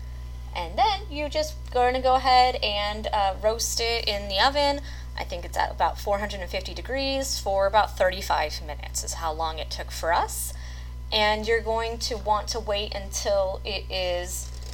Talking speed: 175 wpm